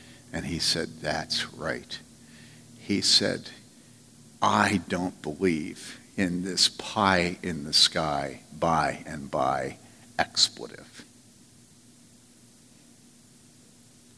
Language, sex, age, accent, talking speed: English, male, 60-79, American, 65 wpm